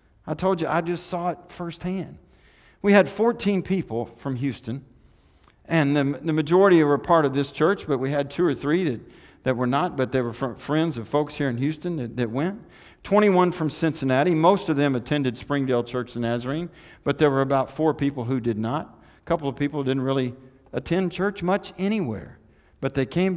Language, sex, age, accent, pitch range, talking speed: English, male, 50-69, American, 130-170 Hz, 200 wpm